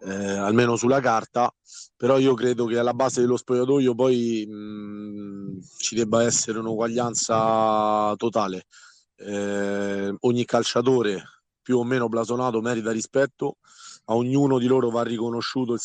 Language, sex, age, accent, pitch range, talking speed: Italian, male, 30-49, native, 105-120 Hz, 135 wpm